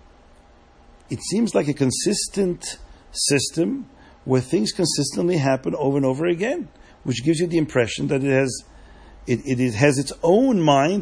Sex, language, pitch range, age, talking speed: male, English, 120-170 Hz, 50-69, 150 wpm